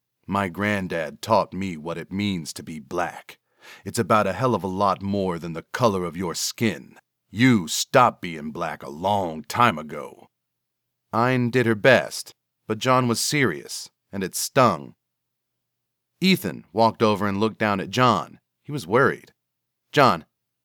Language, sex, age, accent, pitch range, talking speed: English, male, 40-59, American, 95-125 Hz, 160 wpm